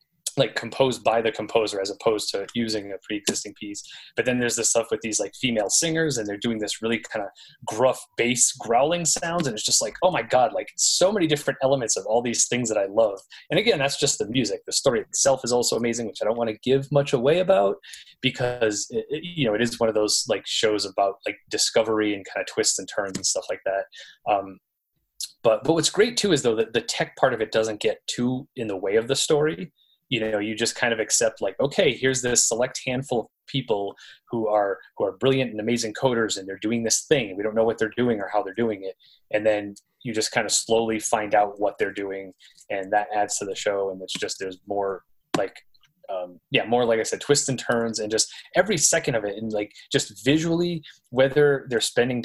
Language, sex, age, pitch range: English, male, 20-39, 105-135 Hz